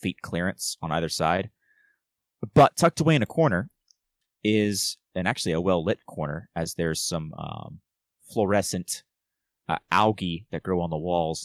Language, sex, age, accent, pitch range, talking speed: English, male, 30-49, American, 85-120 Hz, 150 wpm